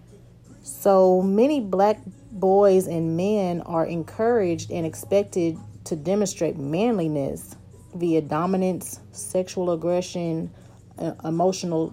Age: 30-49